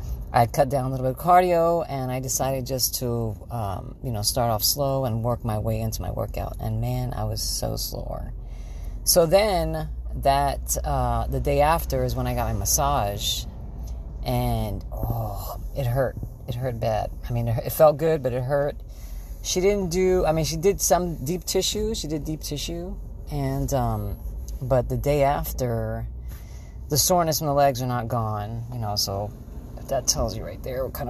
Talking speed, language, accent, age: 190 wpm, English, American, 40-59